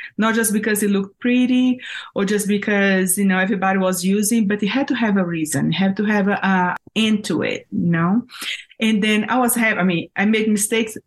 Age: 30-49